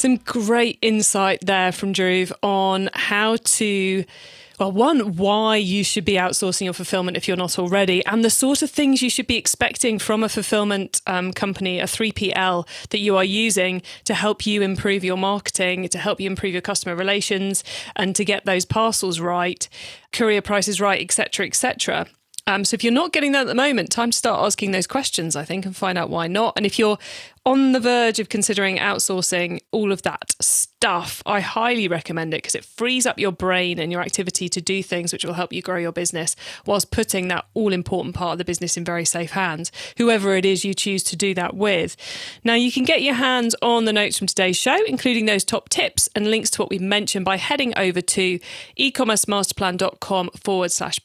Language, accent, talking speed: English, British, 210 wpm